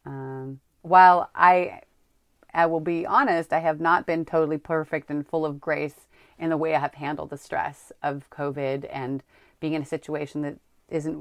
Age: 30-49